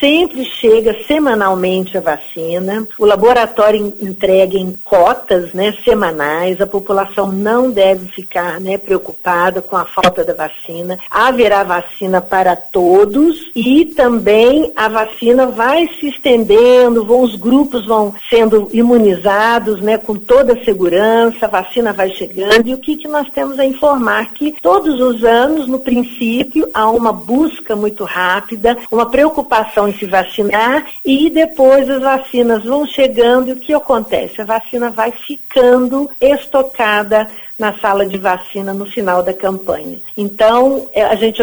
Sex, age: female, 50-69